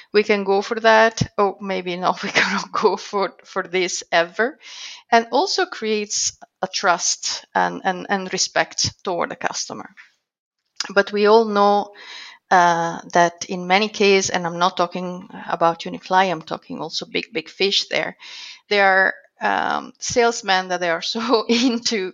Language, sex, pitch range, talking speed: English, female, 180-220 Hz, 155 wpm